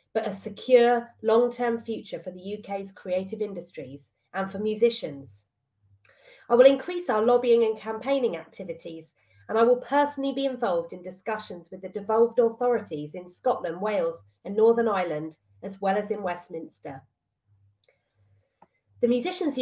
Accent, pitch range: British, 175-245 Hz